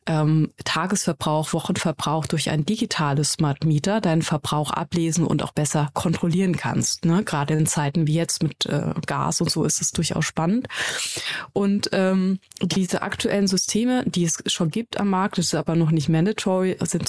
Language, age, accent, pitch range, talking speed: German, 20-39, German, 160-190 Hz, 165 wpm